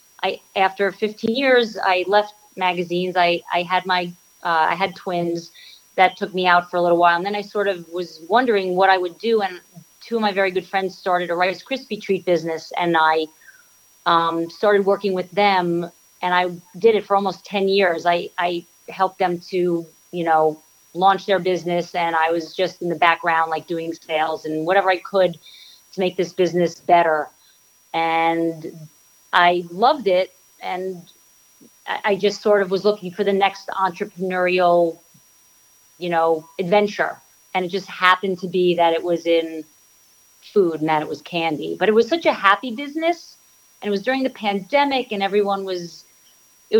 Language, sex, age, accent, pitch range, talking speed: English, female, 40-59, American, 170-200 Hz, 180 wpm